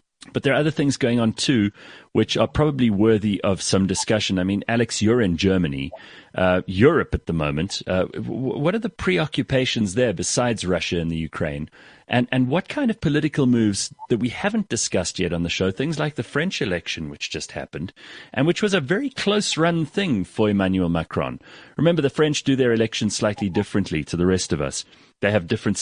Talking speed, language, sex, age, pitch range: 200 wpm, English, male, 30-49, 90-135 Hz